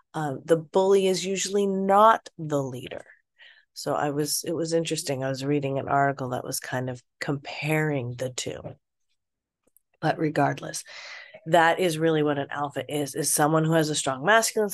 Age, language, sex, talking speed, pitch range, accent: 30-49, English, female, 170 wpm, 140-175 Hz, American